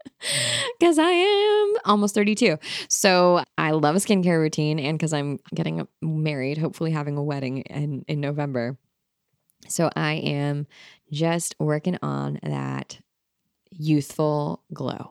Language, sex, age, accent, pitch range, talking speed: English, female, 20-39, American, 145-195 Hz, 125 wpm